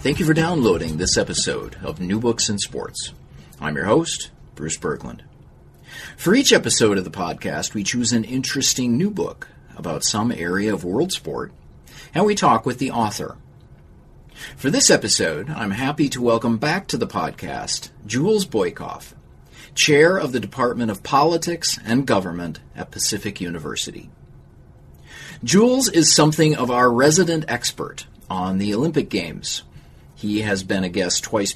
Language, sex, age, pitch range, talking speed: English, male, 40-59, 105-155 Hz, 155 wpm